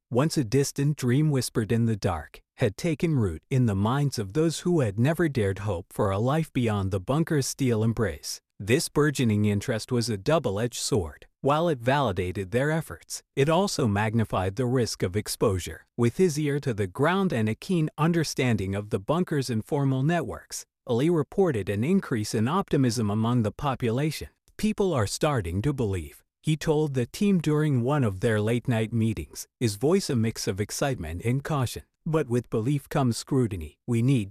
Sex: male